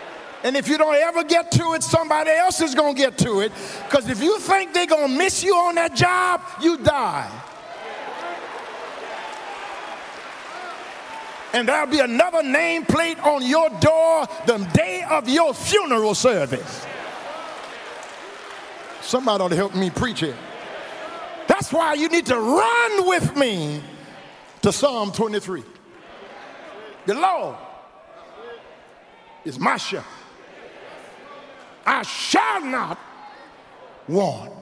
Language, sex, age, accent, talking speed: English, male, 50-69, American, 125 wpm